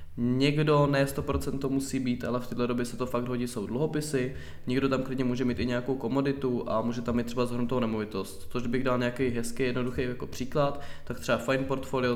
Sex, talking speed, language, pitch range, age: male, 205 wpm, Czech, 105-125 Hz, 20-39